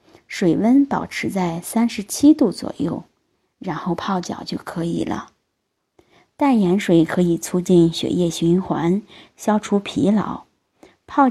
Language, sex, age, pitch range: Chinese, female, 20-39, 180-250 Hz